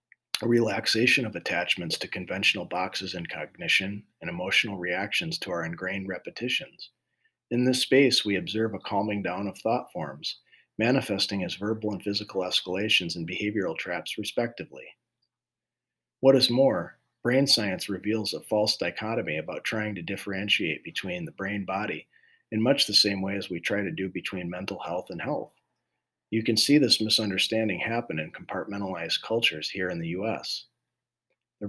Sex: male